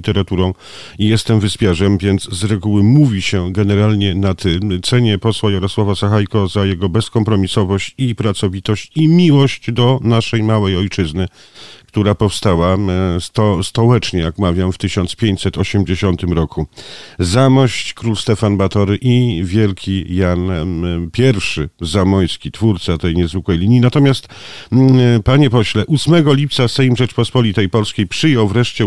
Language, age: Polish, 50-69